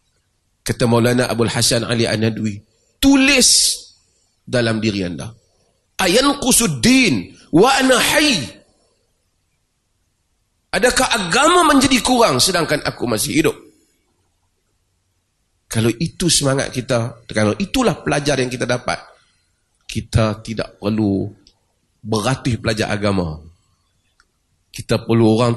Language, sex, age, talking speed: Malay, male, 30-49, 85 wpm